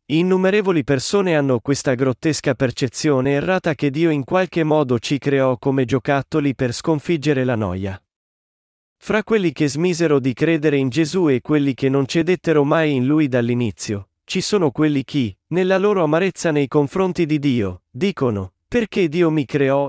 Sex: male